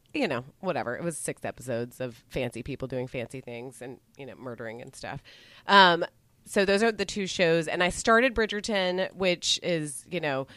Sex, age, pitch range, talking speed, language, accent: female, 30-49, 135-180 Hz, 195 wpm, English, American